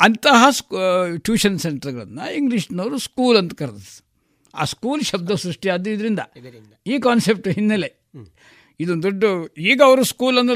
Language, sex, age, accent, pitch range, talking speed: Kannada, male, 60-79, native, 155-225 Hz, 120 wpm